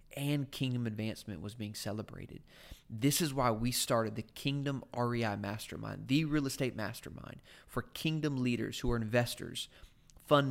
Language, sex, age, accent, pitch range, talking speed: English, male, 30-49, American, 110-130 Hz, 150 wpm